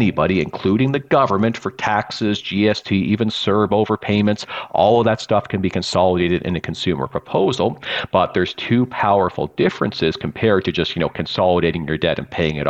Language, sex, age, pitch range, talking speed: English, male, 40-59, 90-105 Hz, 175 wpm